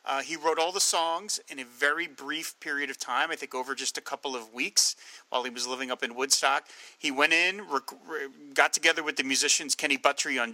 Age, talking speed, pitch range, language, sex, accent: 30-49, 235 wpm, 135-175 Hz, English, male, American